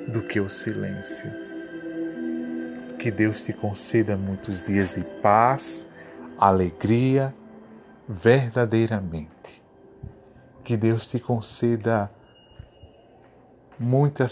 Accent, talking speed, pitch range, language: Brazilian, 80 wpm, 100-120 Hz, Portuguese